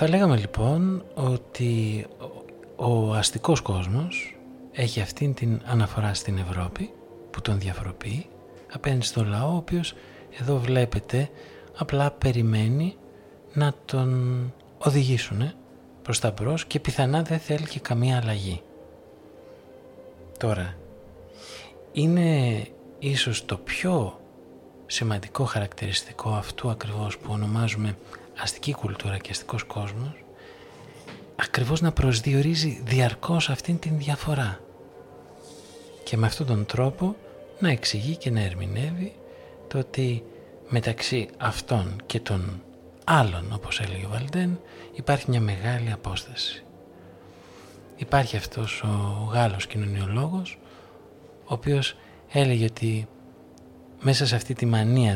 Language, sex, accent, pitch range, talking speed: Greek, male, native, 100-135 Hz, 110 wpm